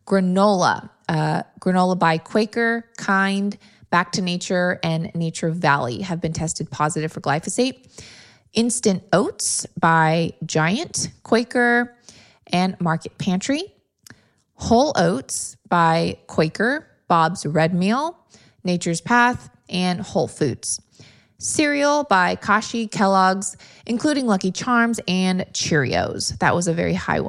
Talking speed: 115 wpm